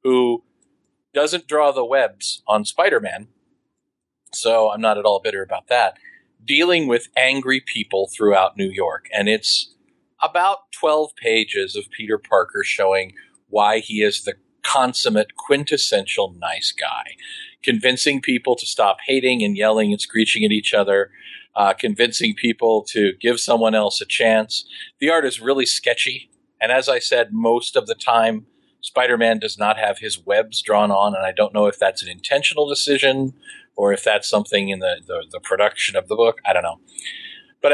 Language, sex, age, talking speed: English, male, 40-59, 170 wpm